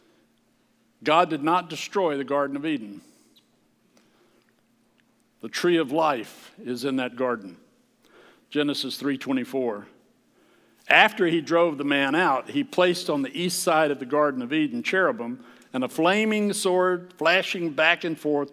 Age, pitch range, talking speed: 60-79, 140-190 Hz, 145 wpm